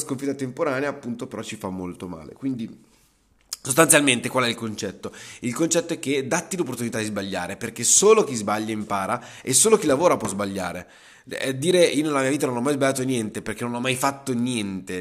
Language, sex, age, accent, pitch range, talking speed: Italian, male, 20-39, native, 110-130 Hz, 195 wpm